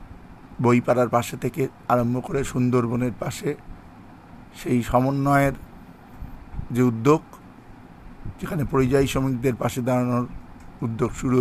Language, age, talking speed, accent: Bengali, 50-69, 95 wpm, native